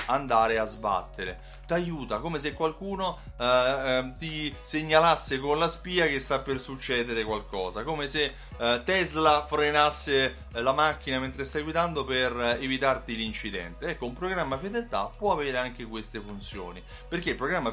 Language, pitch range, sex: Italian, 115-155 Hz, male